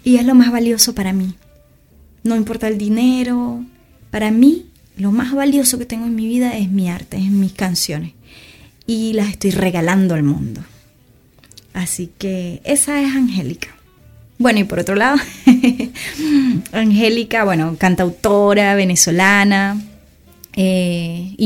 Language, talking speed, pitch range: Spanish, 135 wpm, 185-225 Hz